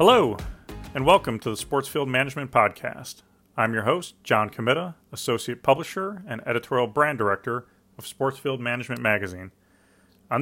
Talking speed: 145 wpm